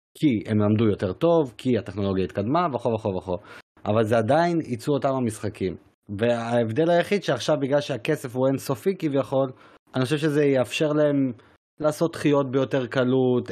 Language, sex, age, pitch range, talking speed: Hebrew, male, 30-49, 115-145 Hz, 150 wpm